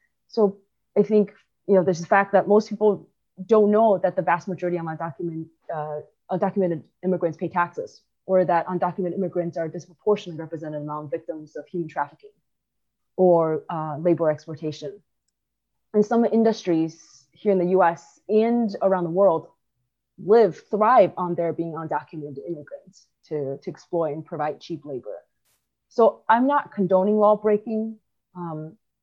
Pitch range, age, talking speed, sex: 165-205 Hz, 20-39, 150 wpm, female